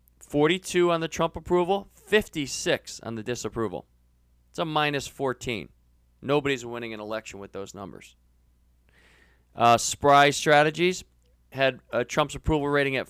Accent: American